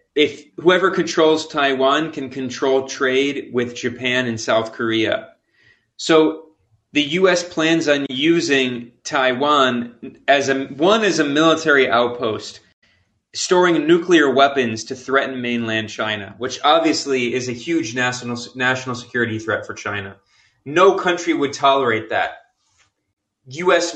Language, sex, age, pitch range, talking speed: English, male, 20-39, 120-150 Hz, 125 wpm